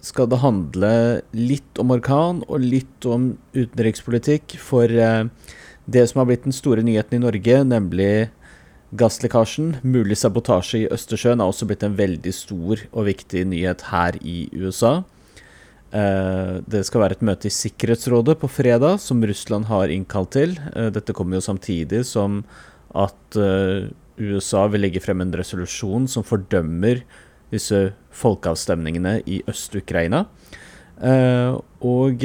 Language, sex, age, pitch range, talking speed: English, male, 30-49, 95-120 Hz, 140 wpm